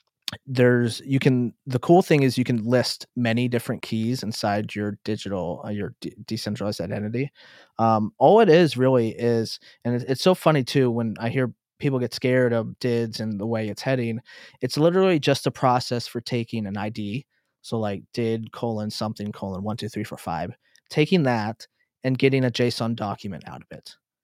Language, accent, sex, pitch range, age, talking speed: English, American, male, 110-125 Hz, 20-39, 180 wpm